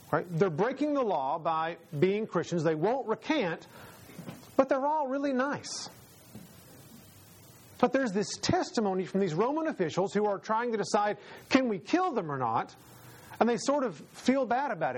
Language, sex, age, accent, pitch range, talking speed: English, male, 40-59, American, 175-240 Hz, 170 wpm